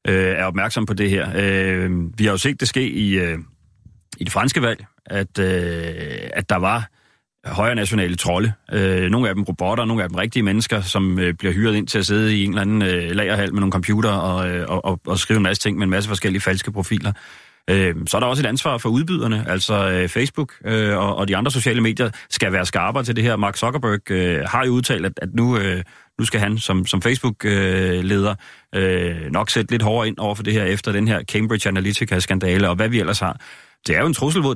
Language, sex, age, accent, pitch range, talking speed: Danish, male, 30-49, native, 95-115 Hz, 210 wpm